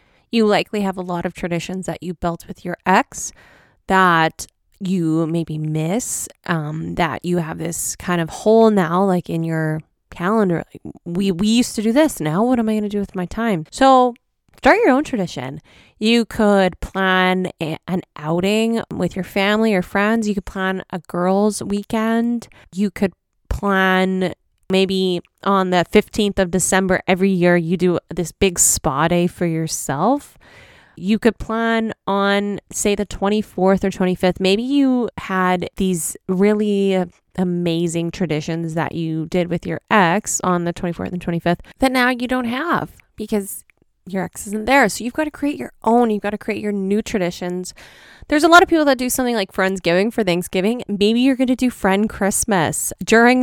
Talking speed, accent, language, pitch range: 175 wpm, American, English, 175-220 Hz